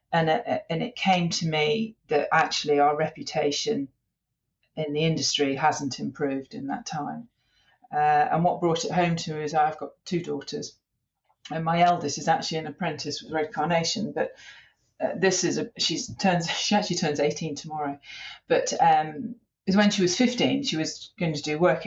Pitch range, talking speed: 140-185 Hz, 185 wpm